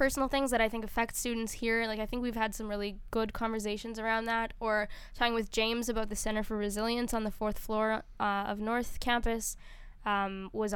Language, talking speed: English, 210 wpm